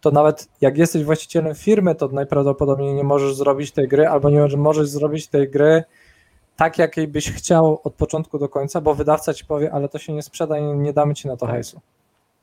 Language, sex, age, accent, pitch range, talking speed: Polish, male, 20-39, native, 140-160 Hz, 210 wpm